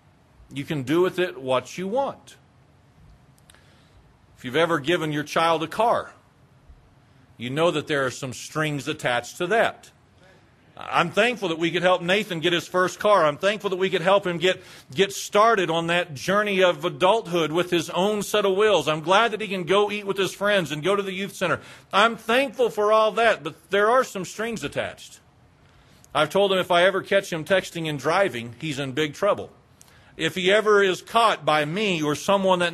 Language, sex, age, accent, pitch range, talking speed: English, male, 40-59, American, 155-210 Hz, 200 wpm